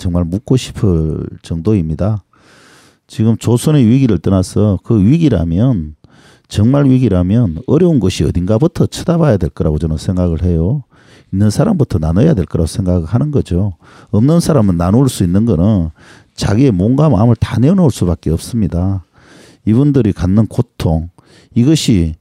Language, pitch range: Korean, 85-125 Hz